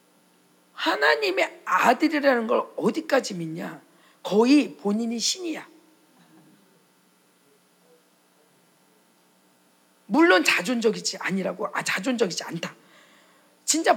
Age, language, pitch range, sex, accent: 40-59, Korean, 195-300 Hz, female, native